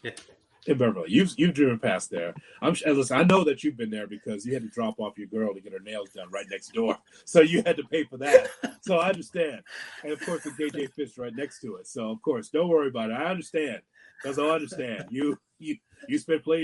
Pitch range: 110-160 Hz